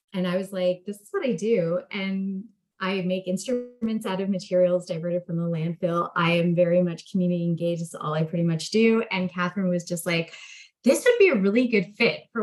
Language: English